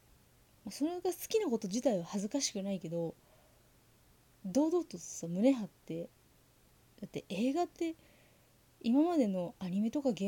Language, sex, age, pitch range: Japanese, female, 20-39, 180-275 Hz